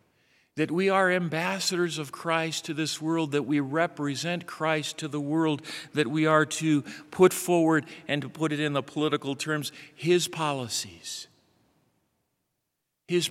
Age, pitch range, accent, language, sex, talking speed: 50-69, 150-170 Hz, American, English, male, 150 wpm